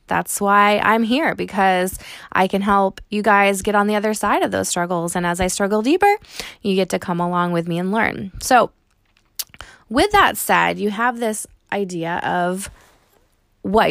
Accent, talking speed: American, 180 wpm